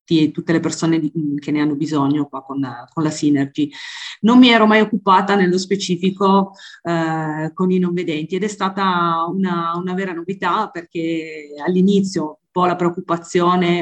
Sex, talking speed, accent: female, 165 wpm, native